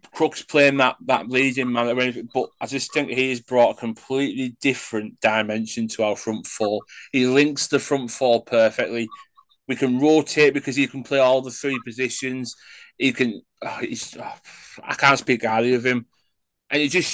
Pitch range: 110-145 Hz